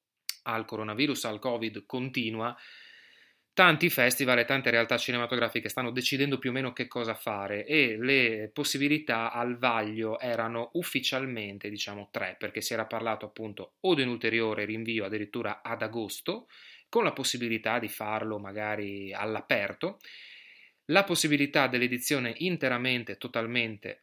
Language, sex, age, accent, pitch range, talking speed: Italian, male, 30-49, native, 110-130 Hz, 130 wpm